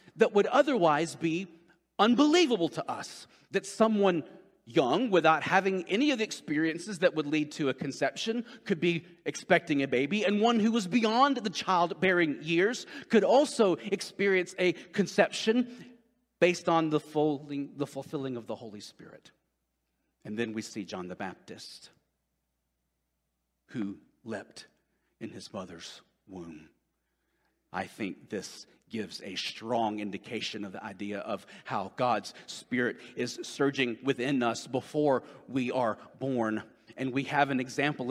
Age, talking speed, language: 40-59, 140 wpm, English